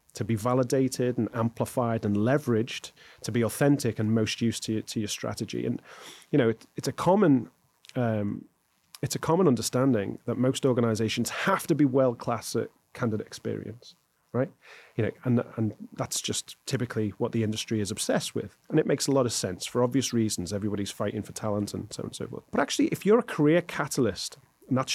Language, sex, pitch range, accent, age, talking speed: English, male, 110-135 Hz, British, 30-49, 195 wpm